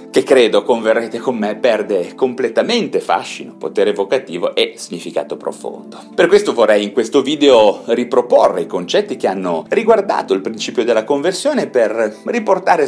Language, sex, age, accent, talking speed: Italian, male, 30-49, native, 145 wpm